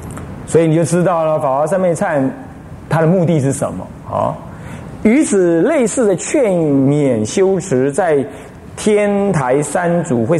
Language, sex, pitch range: Chinese, male, 145-210 Hz